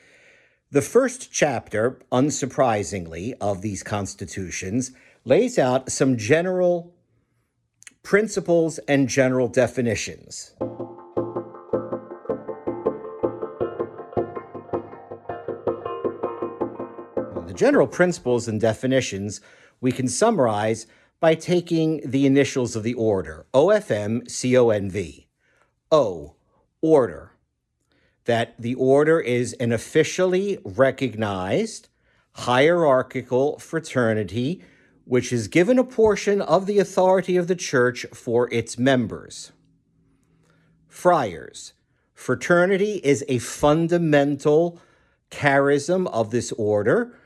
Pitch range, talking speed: 115-160 Hz, 85 wpm